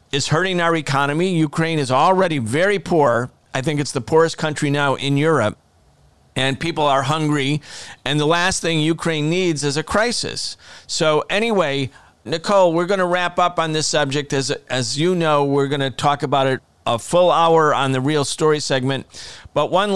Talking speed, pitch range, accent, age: 180 wpm, 140-180 Hz, American, 40-59